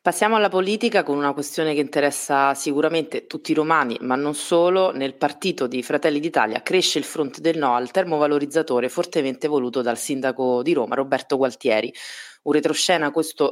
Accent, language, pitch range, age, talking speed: native, Italian, 135-165 Hz, 30-49, 170 wpm